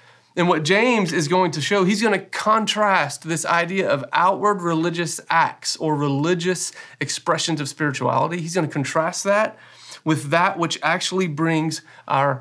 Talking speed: 150 wpm